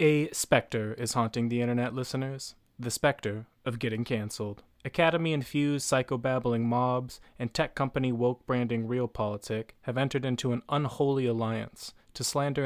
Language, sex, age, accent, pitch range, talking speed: English, male, 20-39, American, 115-135 Hz, 135 wpm